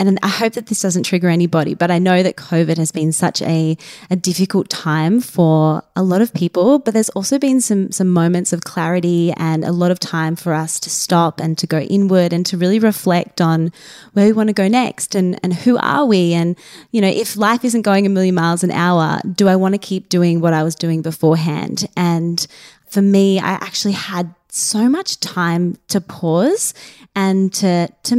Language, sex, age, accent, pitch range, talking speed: English, female, 20-39, Australian, 165-195 Hz, 215 wpm